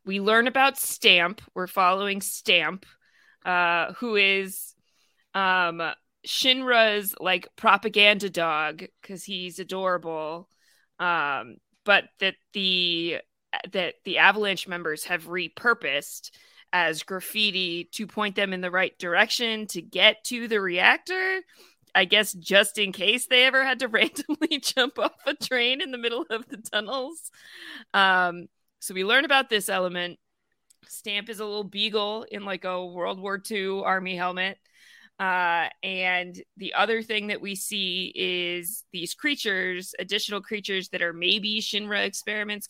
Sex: female